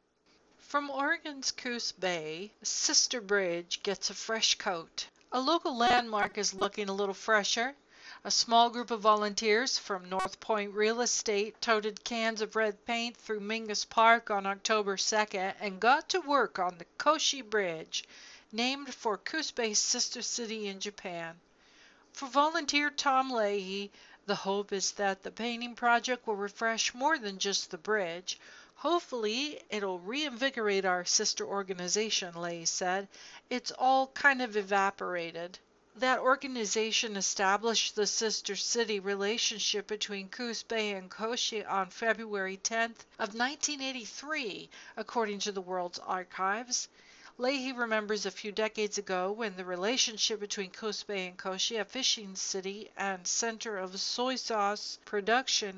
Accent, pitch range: American, 200-240 Hz